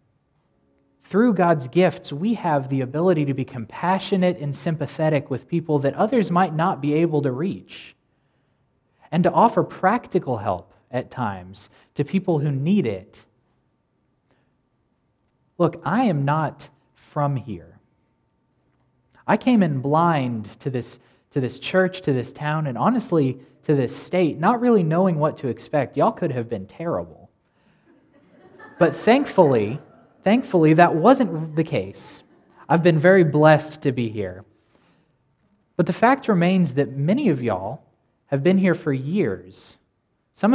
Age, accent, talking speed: 20-39, American, 140 wpm